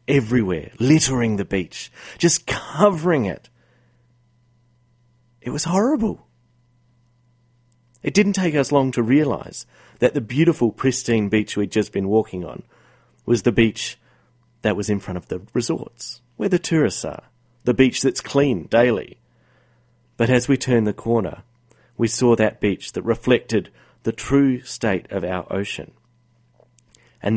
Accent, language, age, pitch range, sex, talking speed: Australian, English, 30-49, 115-125 Hz, male, 140 wpm